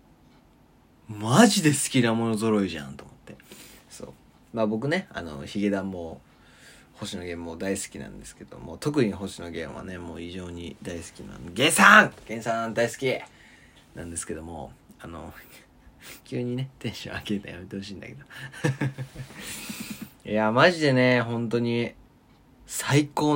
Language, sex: Japanese, male